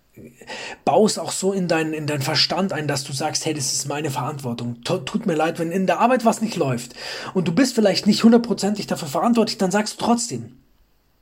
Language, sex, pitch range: German, male, 135-190 Hz